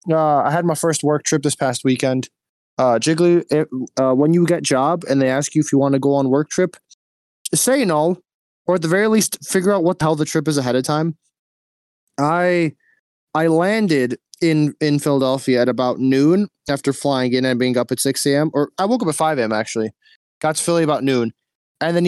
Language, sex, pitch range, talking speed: English, male, 130-160 Hz, 215 wpm